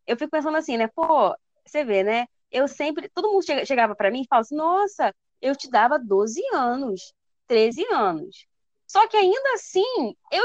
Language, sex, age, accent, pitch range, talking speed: Portuguese, female, 20-39, Brazilian, 225-365 Hz, 185 wpm